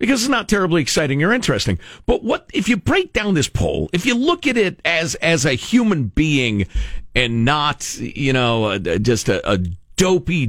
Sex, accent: male, American